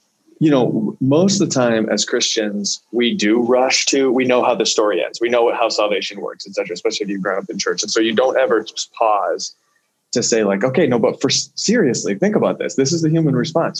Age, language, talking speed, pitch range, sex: 20-39, English, 240 wpm, 110-140 Hz, male